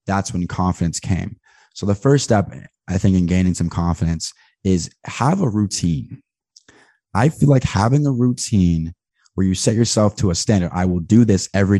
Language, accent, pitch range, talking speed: English, American, 90-105 Hz, 185 wpm